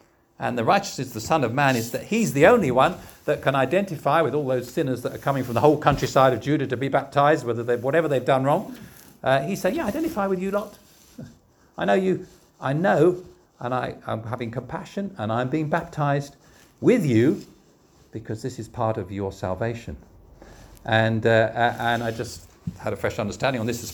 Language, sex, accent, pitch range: English, male, British, 120-165 Hz